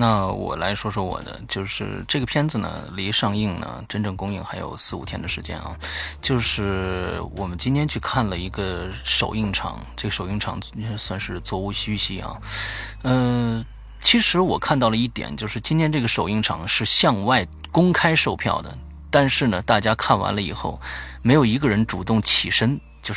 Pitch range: 95-125 Hz